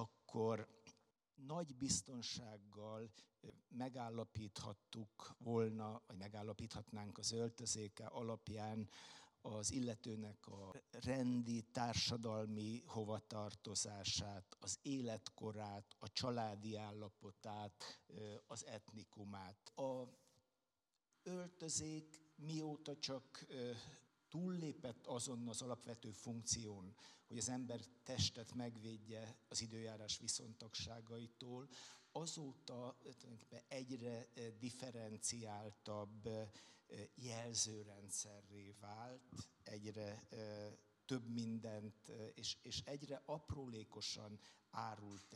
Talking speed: 70 wpm